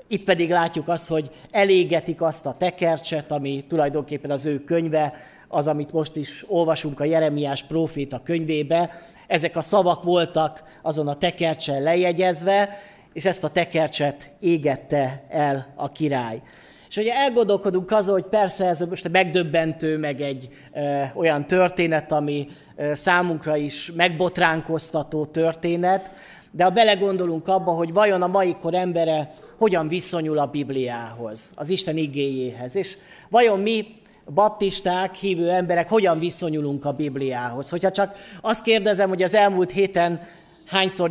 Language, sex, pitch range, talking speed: Hungarian, male, 150-185 Hz, 140 wpm